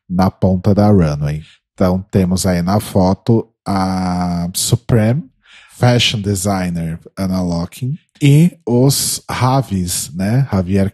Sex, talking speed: male, 95 wpm